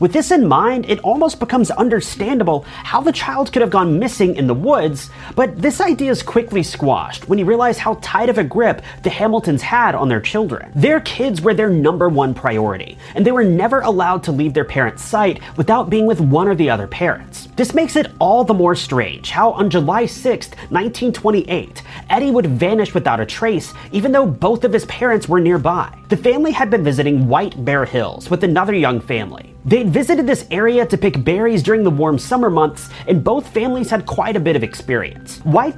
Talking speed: 205 wpm